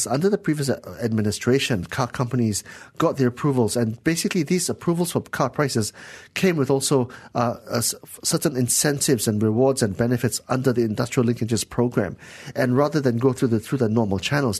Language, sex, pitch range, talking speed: English, male, 110-130 Hz, 175 wpm